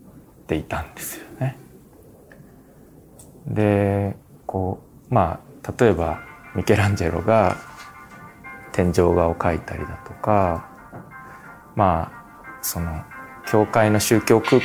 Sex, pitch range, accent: male, 85-110 Hz, native